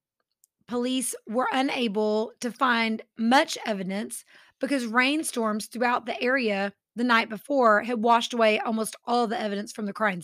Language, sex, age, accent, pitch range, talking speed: English, female, 30-49, American, 215-285 Hz, 150 wpm